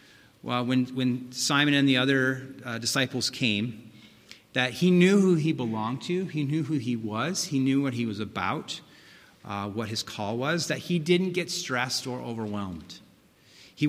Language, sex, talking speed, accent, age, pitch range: English, male, 175 wpm, American, 30-49, 115-150 Hz